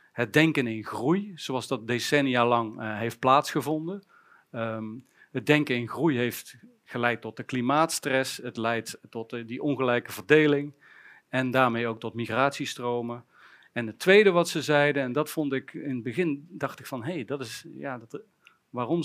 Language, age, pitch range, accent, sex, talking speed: Dutch, 40-59, 120-155 Hz, Dutch, male, 150 wpm